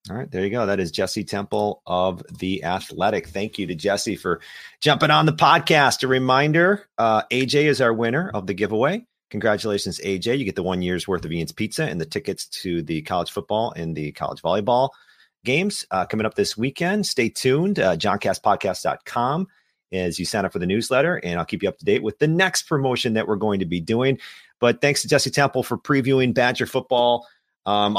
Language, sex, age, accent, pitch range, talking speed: English, male, 40-59, American, 90-130 Hz, 210 wpm